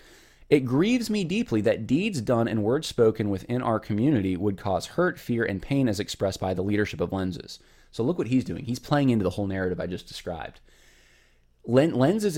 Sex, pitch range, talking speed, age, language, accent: male, 95-130 Hz, 200 wpm, 20-39, English, American